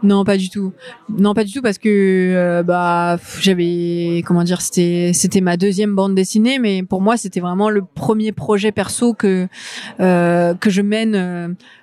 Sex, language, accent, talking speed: female, French, French, 185 wpm